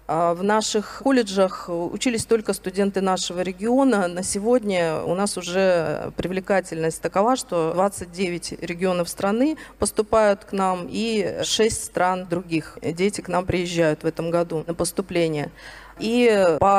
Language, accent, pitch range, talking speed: Russian, native, 175-205 Hz, 130 wpm